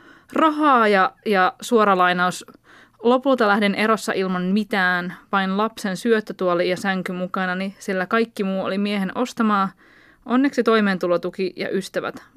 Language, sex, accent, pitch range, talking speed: Finnish, female, native, 190-245 Hz, 130 wpm